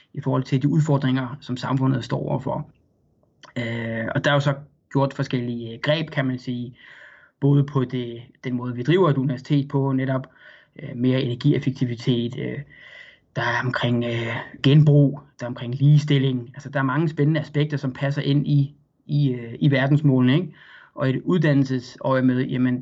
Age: 20-39